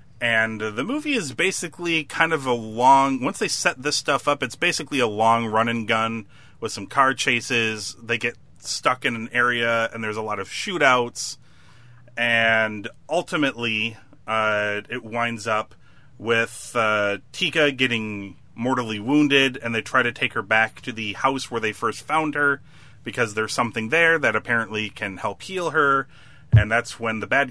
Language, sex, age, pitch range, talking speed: English, male, 30-49, 110-135 Hz, 170 wpm